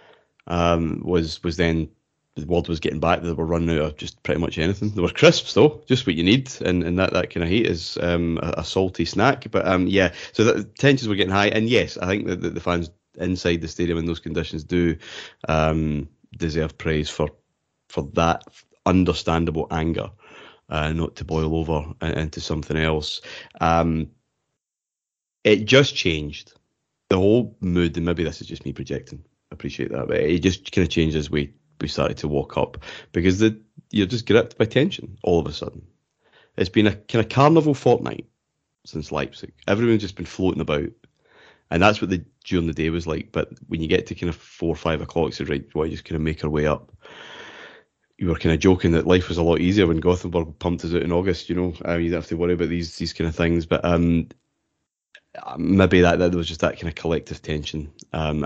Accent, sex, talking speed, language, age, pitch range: British, male, 215 wpm, English, 30-49, 80-90 Hz